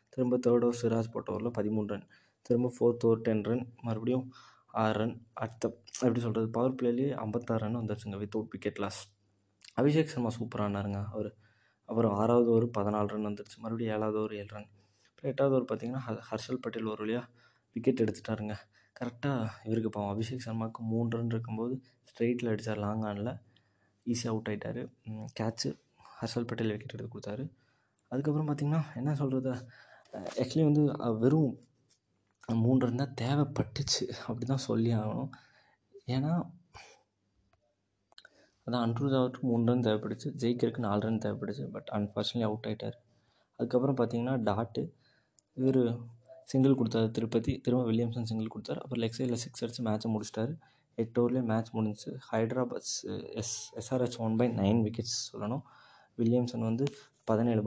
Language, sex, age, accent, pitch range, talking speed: Tamil, male, 20-39, native, 110-125 Hz, 135 wpm